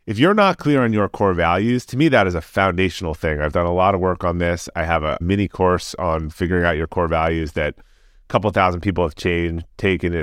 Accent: American